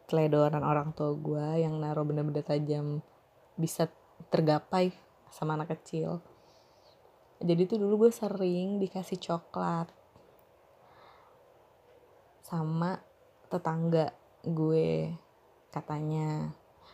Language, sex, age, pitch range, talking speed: Indonesian, female, 20-39, 170-220 Hz, 85 wpm